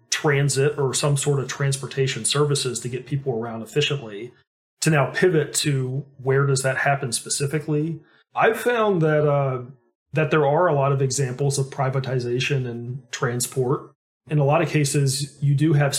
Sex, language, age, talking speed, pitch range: male, English, 30-49, 165 wpm, 130-145 Hz